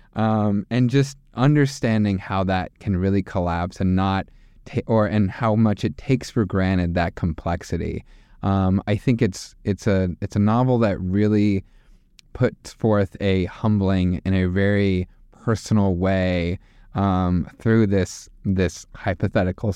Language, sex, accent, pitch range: English, male, American, 95-110 Hz